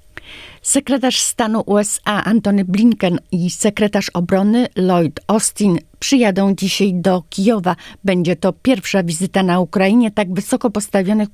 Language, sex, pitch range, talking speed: Polish, female, 165-210 Hz, 120 wpm